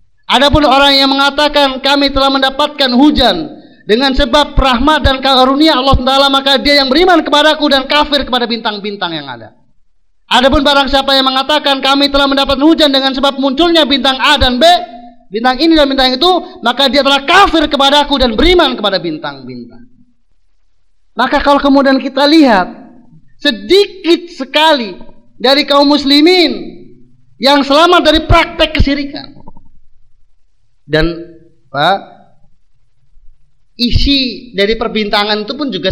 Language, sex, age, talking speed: Malay, male, 30-49, 130 wpm